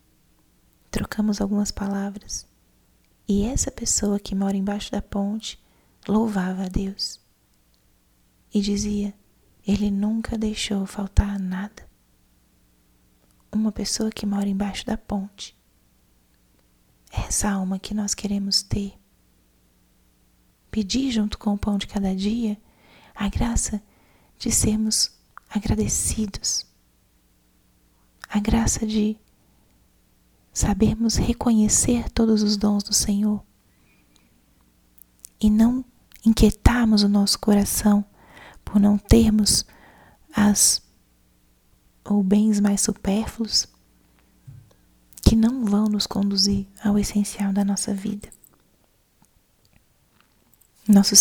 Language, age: Portuguese, 20-39